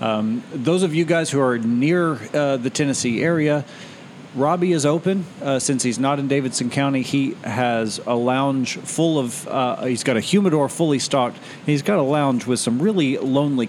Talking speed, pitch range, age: 190 wpm, 120-155 Hz, 40-59